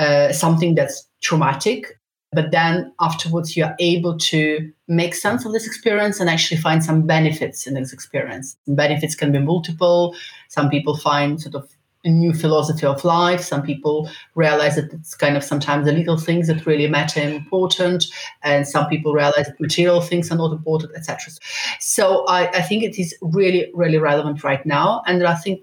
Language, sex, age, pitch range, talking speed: English, female, 30-49, 150-175 Hz, 185 wpm